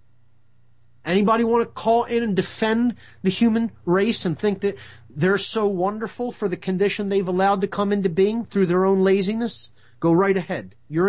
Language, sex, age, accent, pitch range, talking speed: English, male, 30-49, American, 120-195 Hz, 180 wpm